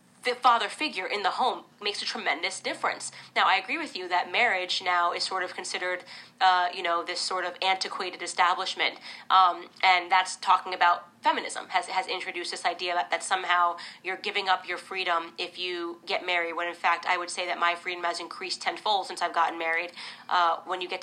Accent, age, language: American, 30-49, English